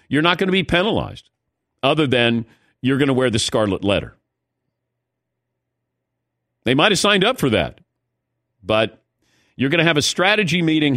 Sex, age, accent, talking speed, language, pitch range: male, 50-69, American, 165 wpm, English, 120-170 Hz